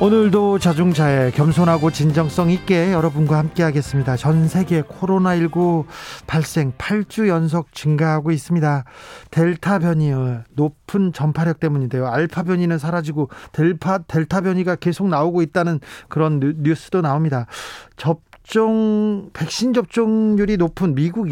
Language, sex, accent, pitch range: Korean, male, native, 140-180 Hz